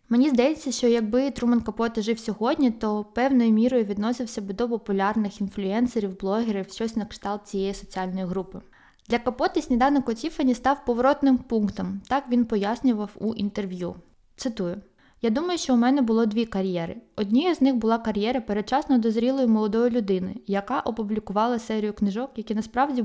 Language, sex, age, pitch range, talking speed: Ukrainian, female, 20-39, 210-250 Hz, 155 wpm